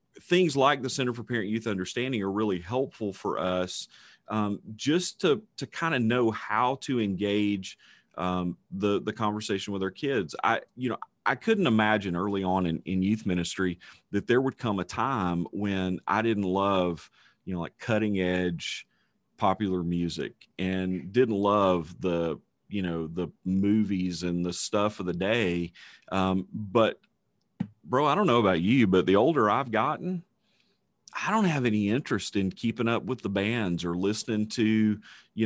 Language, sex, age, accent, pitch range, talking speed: English, male, 40-59, American, 95-115 Hz, 170 wpm